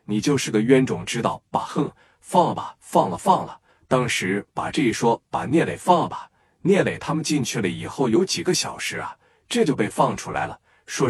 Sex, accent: male, native